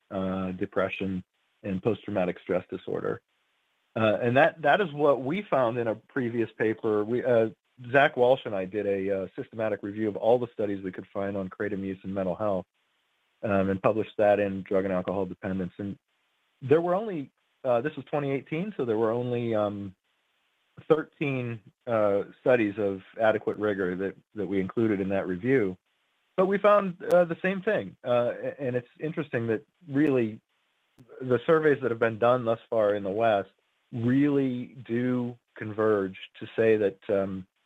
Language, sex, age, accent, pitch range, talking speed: English, male, 40-59, American, 100-125 Hz, 170 wpm